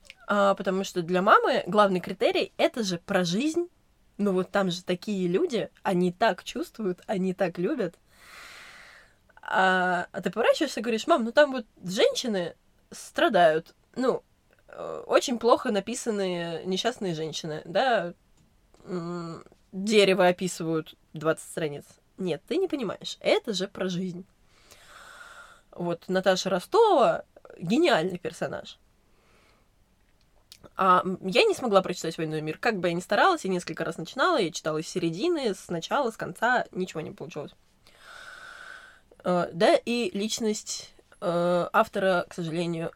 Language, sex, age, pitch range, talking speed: Russian, female, 20-39, 175-240 Hz, 125 wpm